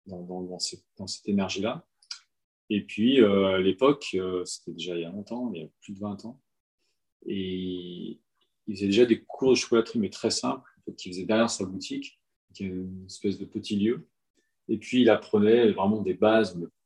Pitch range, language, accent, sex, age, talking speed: 95-115 Hz, French, French, male, 30-49, 210 wpm